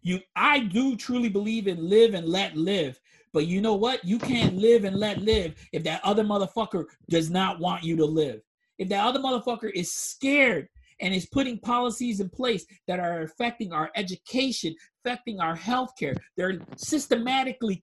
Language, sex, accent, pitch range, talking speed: English, male, American, 170-230 Hz, 175 wpm